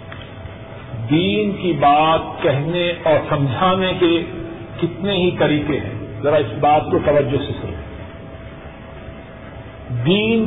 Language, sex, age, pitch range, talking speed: Urdu, male, 50-69, 130-185 Hz, 110 wpm